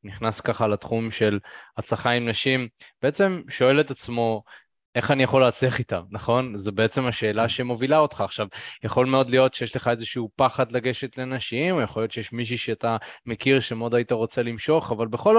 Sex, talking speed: male, 175 wpm